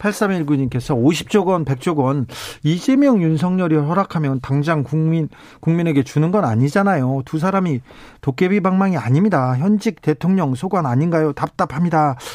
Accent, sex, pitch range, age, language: native, male, 140-195 Hz, 40-59, Korean